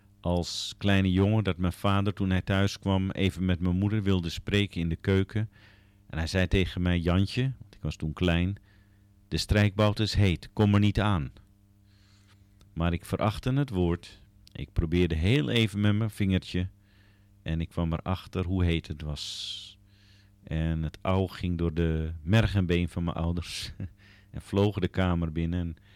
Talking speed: 170 wpm